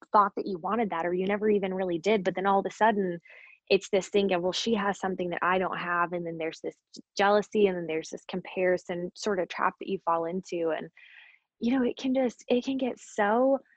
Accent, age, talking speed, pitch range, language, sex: American, 20-39, 240 wpm, 180-220 Hz, English, female